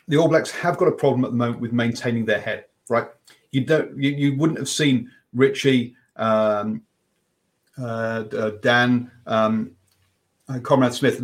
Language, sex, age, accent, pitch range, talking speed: English, male, 40-59, British, 115-140 Hz, 165 wpm